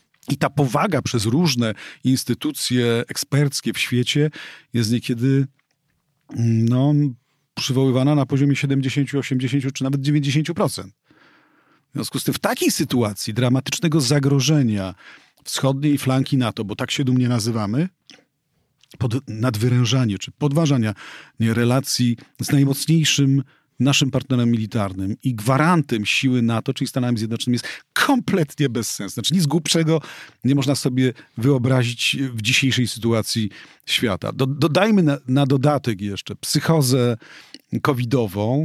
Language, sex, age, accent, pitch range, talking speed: Polish, male, 40-59, native, 115-140 Hz, 120 wpm